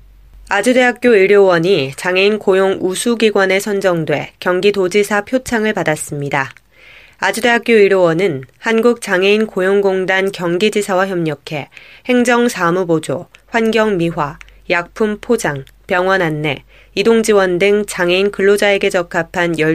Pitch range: 165-210 Hz